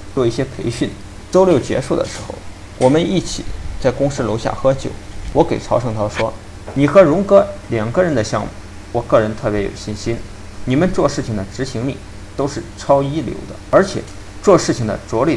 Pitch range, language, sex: 100-130 Hz, Chinese, male